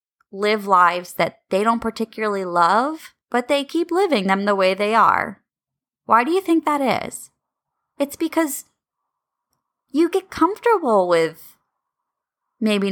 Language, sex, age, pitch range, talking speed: English, female, 20-39, 195-285 Hz, 135 wpm